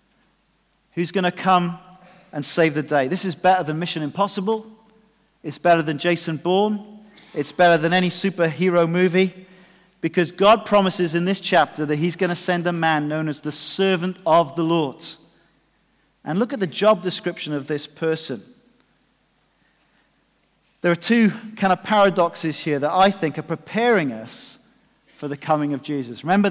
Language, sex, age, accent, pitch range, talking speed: English, male, 40-59, British, 150-190 Hz, 165 wpm